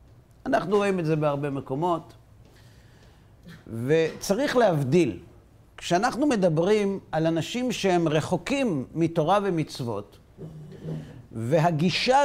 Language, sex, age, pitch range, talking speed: Hebrew, male, 50-69, 120-195 Hz, 85 wpm